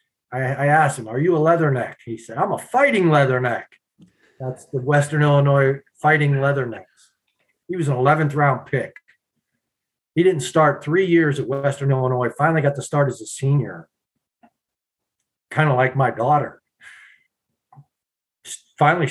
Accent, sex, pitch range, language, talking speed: American, male, 135-175 Hz, English, 145 wpm